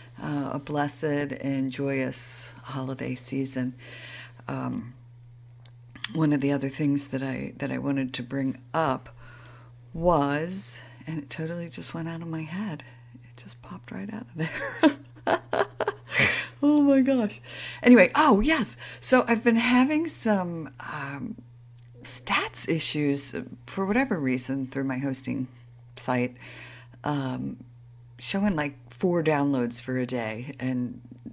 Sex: female